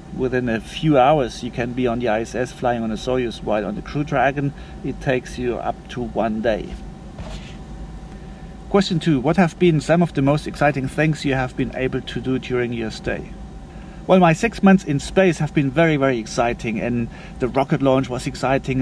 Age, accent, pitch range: 40-59, German, 125-150 Hz